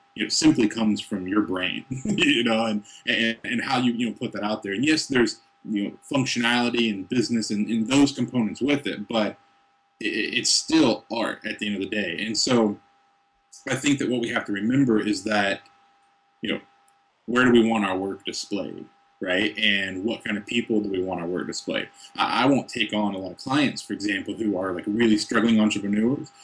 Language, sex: English, male